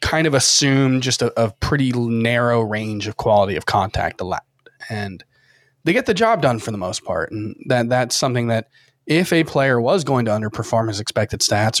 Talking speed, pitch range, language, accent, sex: 200 wpm, 110-135 Hz, English, American, male